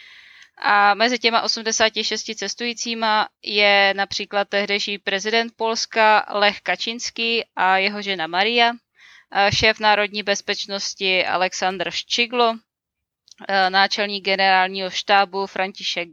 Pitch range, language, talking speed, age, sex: 190-215 Hz, Czech, 95 wpm, 20-39, female